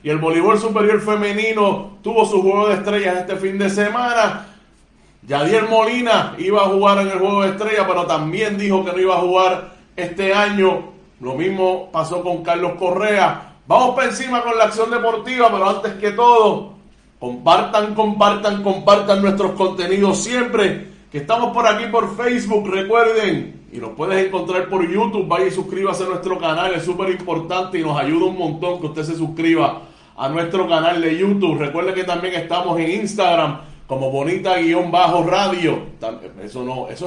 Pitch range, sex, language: 175-210 Hz, male, Spanish